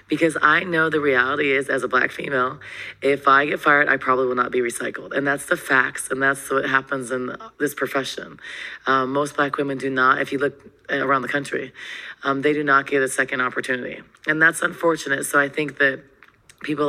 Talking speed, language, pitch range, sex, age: 210 wpm, English, 130-150 Hz, female, 20-39